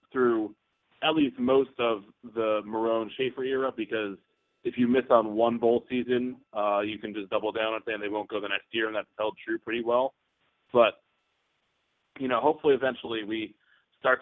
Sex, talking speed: male, 185 wpm